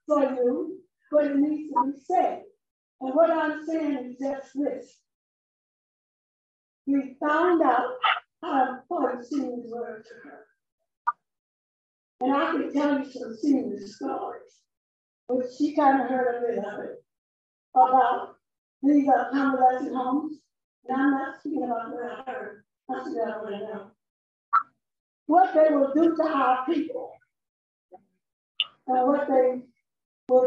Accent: American